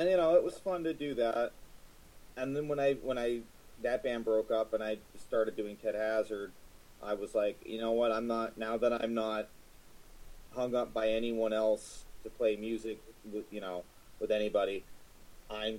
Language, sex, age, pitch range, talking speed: English, male, 30-49, 105-120 Hz, 195 wpm